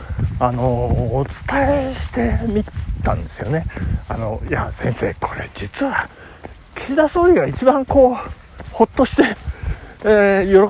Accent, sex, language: native, male, Japanese